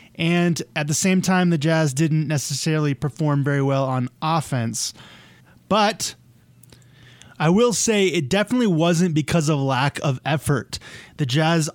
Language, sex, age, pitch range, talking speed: English, male, 20-39, 140-170 Hz, 145 wpm